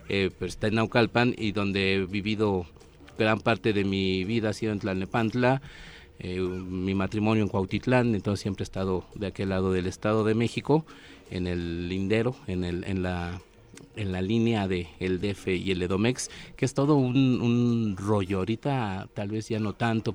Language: Spanish